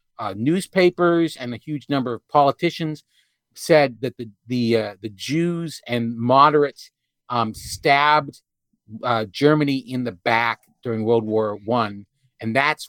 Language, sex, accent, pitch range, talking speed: English, male, American, 115-155 Hz, 140 wpm